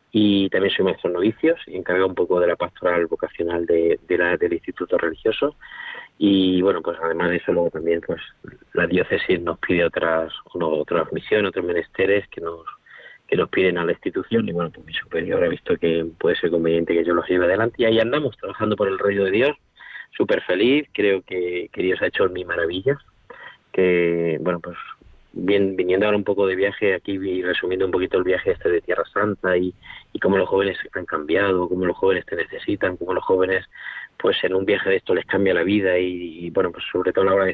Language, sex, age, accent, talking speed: Spanish, male, 30-49, Spanish, 215 wpm